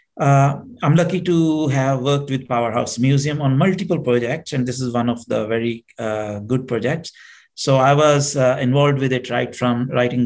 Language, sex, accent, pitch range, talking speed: English, male, Indian, 115-140 Hz, 185 wpm